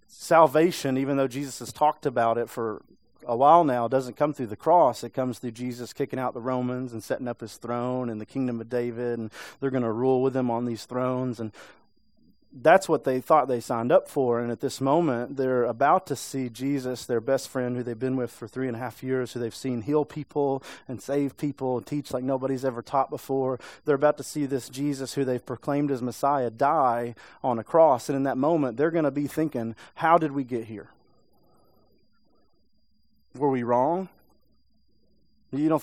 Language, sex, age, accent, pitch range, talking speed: English, male, 30-49, American, 125-155 Hz, 210 wpm